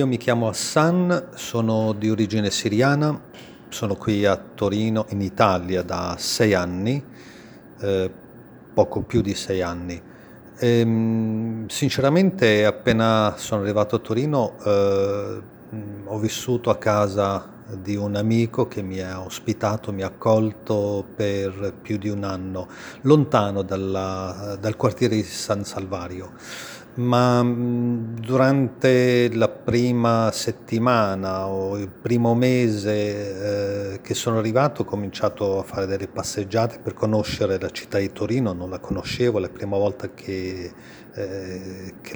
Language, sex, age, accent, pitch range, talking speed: Italian, male, 40-59, native, 100-120 Hz, 130 wpm